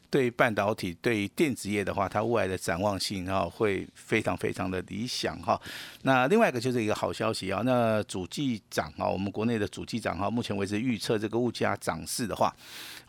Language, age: Chinese, 50-69